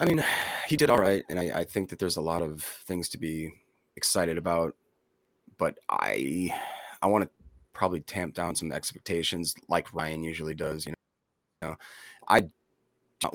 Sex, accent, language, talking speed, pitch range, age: male, American, English, 170 wpm, 80-95 Hz, 30-49